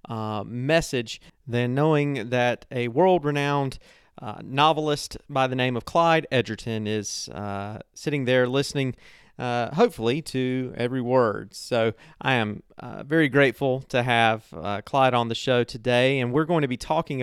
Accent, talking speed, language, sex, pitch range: American, 155 wpm, English, male, 115-145 Hz